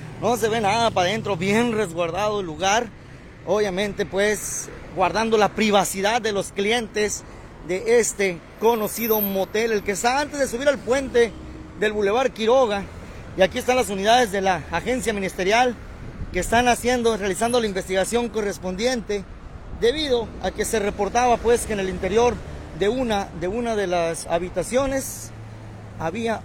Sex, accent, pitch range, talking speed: male, Mexican, 145-215 Hz, 150 wpm